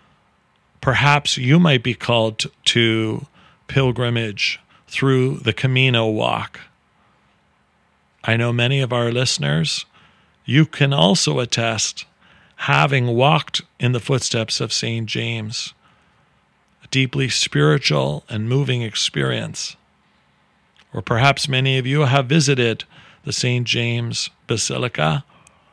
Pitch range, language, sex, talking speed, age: 115-135 Hz, English, male, 105 wpm, 40-59